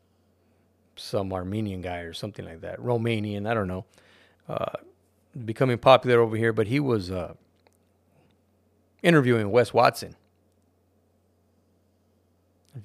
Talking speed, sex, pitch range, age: 110 wpm, male, 100-115 Hz, 30-49